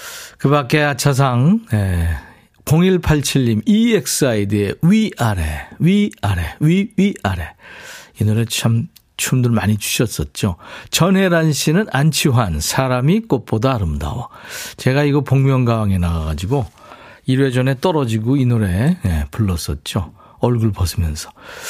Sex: male